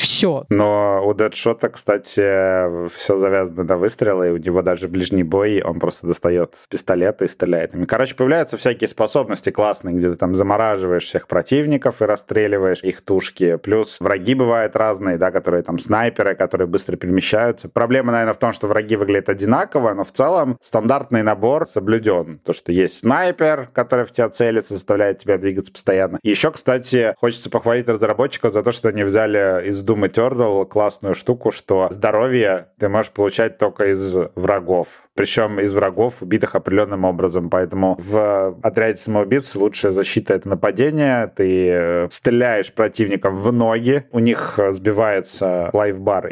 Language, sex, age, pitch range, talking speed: Russian, male, 30-49, 95-115 Hz, 155 wpm